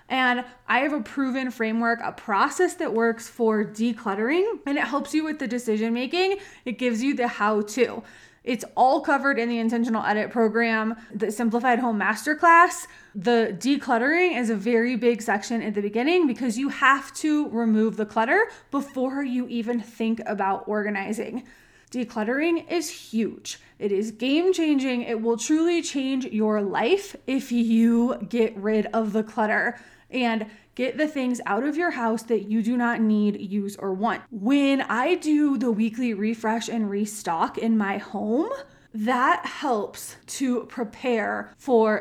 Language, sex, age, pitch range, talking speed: English, female, 20-39, 220-265 Hz, 155 wpm